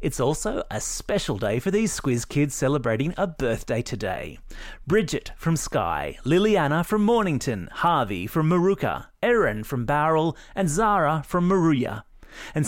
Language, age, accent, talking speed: English, 30-49, Australian, 140 wpm